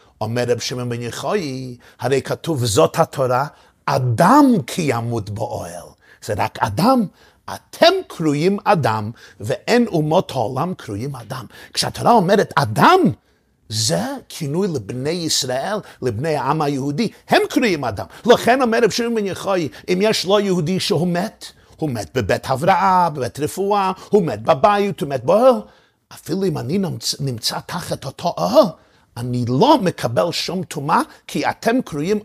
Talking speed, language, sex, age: 145 wpm, Hebrew, male, 50-69